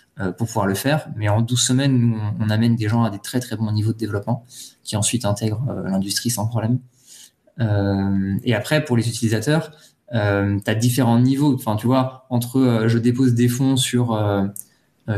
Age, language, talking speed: 20-39, French, 200 wpm